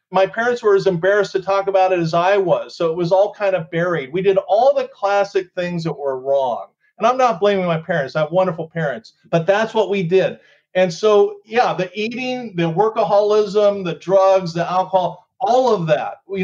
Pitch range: 170-205 Hz